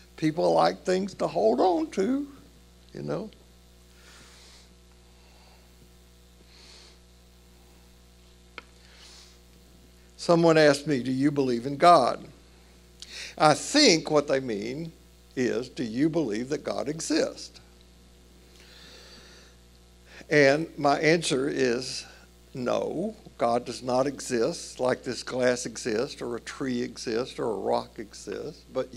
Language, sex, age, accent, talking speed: English, male, 60-79, American, 105 wpm